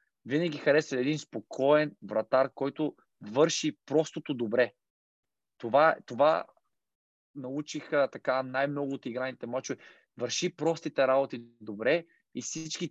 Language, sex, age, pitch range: Bulgarian, male, 20-39, 130-150 Hz